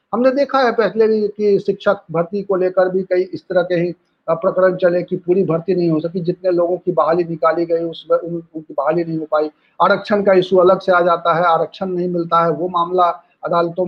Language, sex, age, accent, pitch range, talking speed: Hindi, male, 40-59, native, 170-220 Hz, 225 wpm